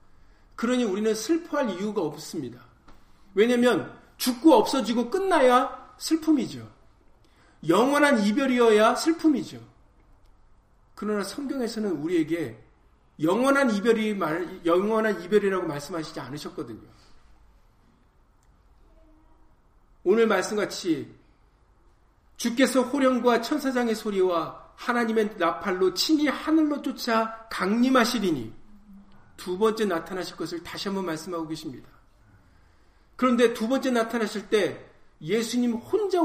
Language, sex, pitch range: Korean, male, 165-245 Hz